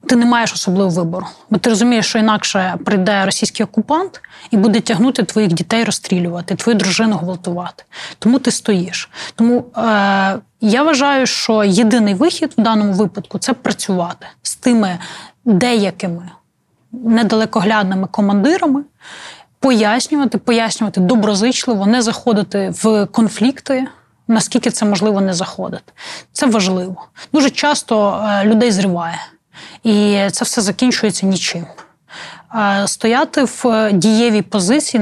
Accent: native